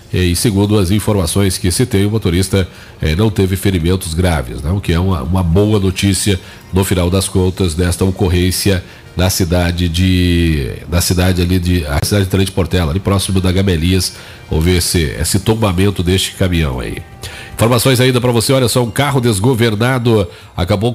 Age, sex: 40-59, male